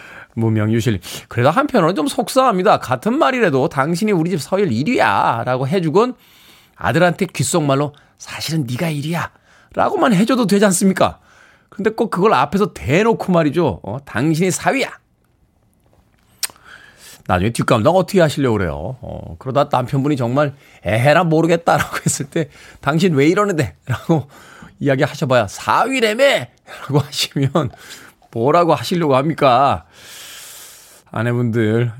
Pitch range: 130-190 Hz